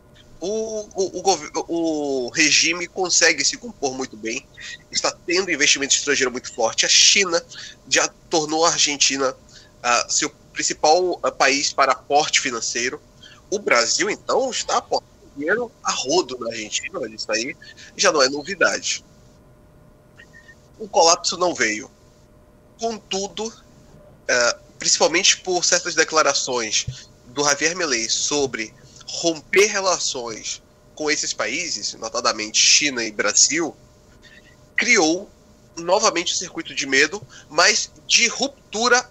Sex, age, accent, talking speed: male, 20-39, Brazilian, 120 wpm